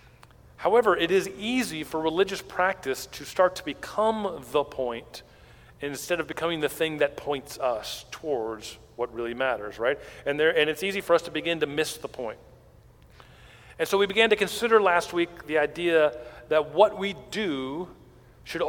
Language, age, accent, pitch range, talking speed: English, 40-59, American, 145-190 Hz, 175 wpm